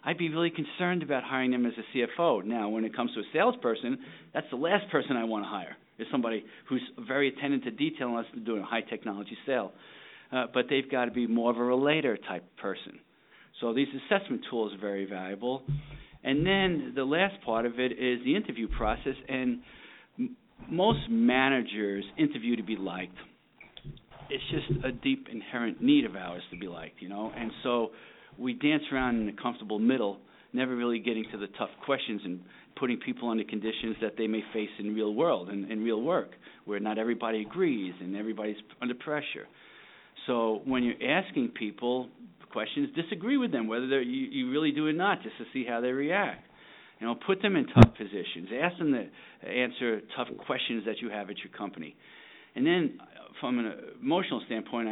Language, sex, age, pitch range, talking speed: English, male, 50-69, 110-145 Hz, 190 wpm